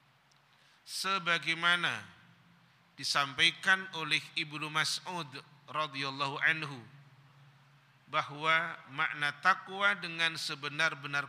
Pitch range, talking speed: 140-175 Hz, 65 wpm